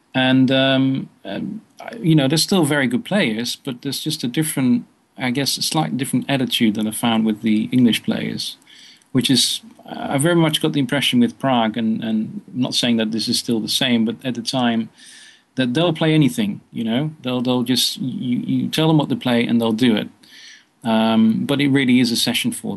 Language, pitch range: English, 115-155 Hz